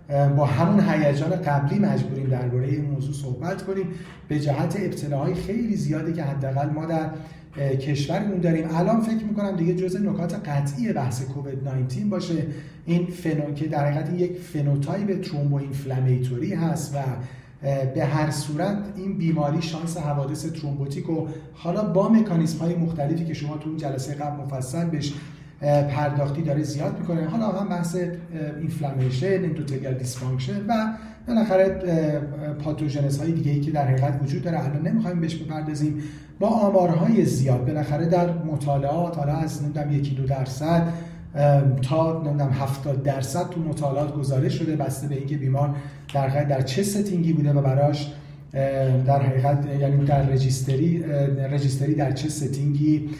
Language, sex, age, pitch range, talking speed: Persian, male, 30-49, 140-170 Hz, 145 wpm